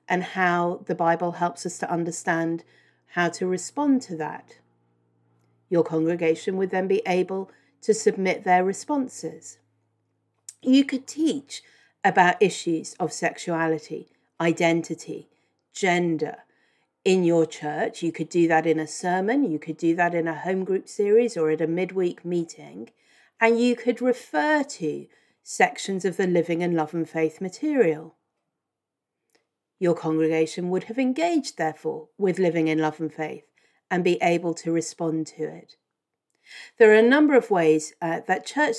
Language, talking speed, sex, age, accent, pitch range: English, 150 wpm, female, 40-59, British, 165-220 Hz